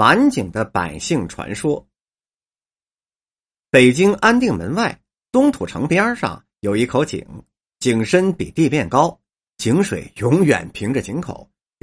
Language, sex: Chinese, male